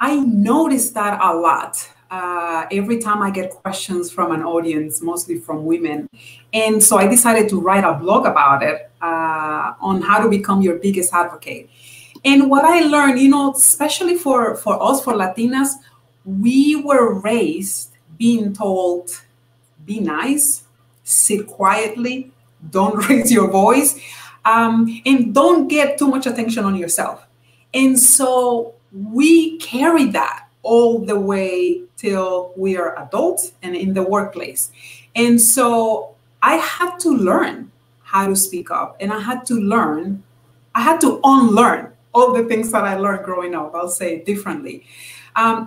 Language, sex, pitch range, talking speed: English, female, 175-245 Hz, 150 wpm